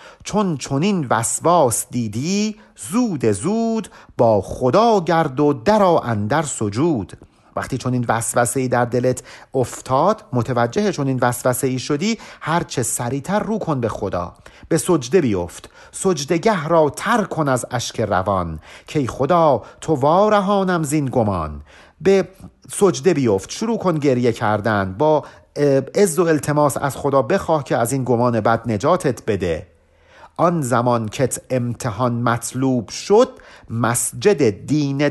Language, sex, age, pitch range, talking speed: Persian, male, 50-69, 120-165 Hz, 130 wpm